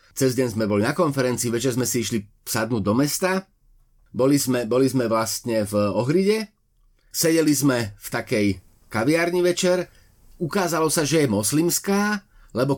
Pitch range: 125-170 Hz